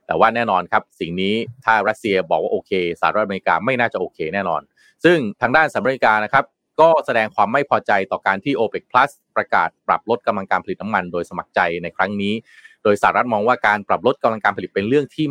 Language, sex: Thai, male